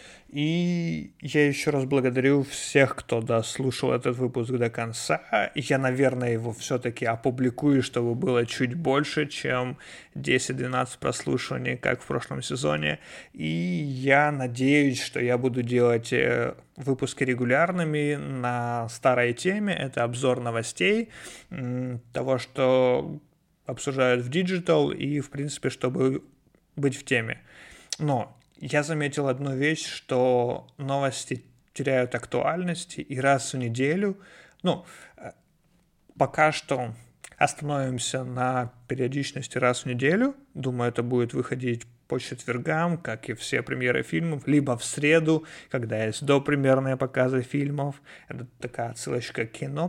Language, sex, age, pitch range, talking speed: Ukrainian, male, 30-49, 125-145 Hz, 120 wpm